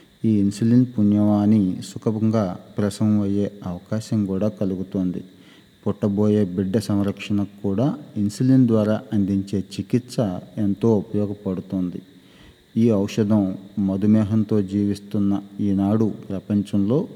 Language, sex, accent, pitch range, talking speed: Telugu, male, native, 95-110 Hz, 85 wpm